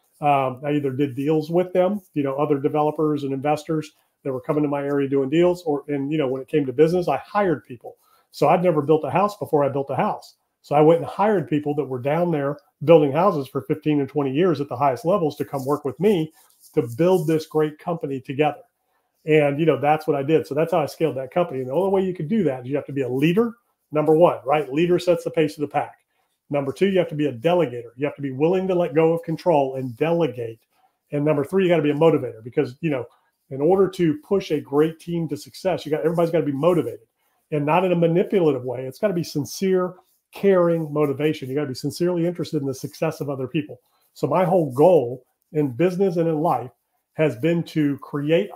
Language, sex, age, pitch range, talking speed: English, male, 40-59, 145-175 Hz, 250 wpm